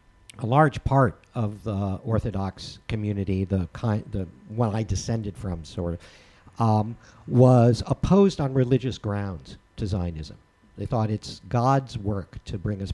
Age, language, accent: 50-69, English, American